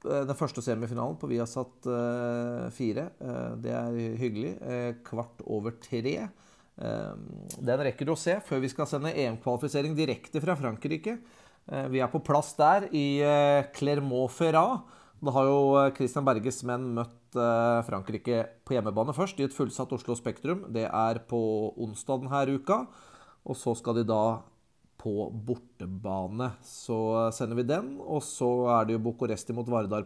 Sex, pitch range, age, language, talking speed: male, 120-155 Hz, 30-49, English, 155 wpm